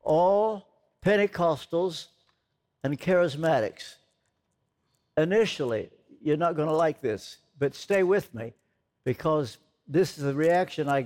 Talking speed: 115 wpm